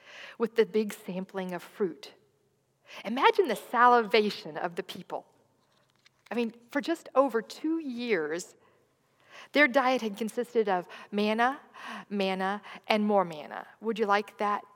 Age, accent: 50-69, American